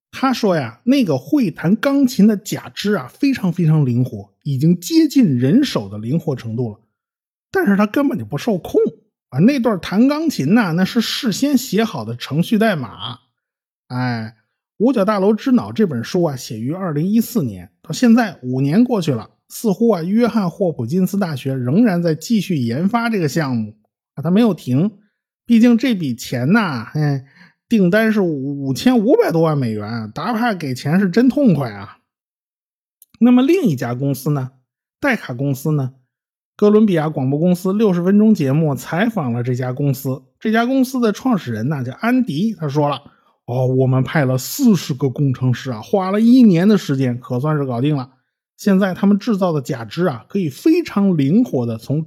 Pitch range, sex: 135-220 Hz, male